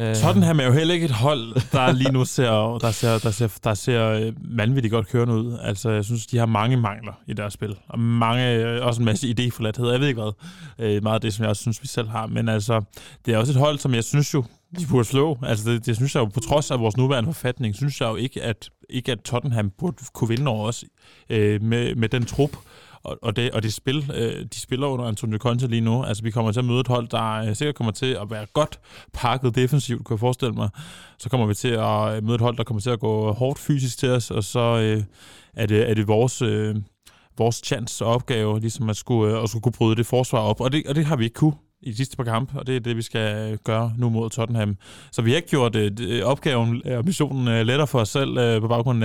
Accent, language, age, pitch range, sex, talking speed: native, Danish, 20-39, 110-130 Hz, male, 255 wpm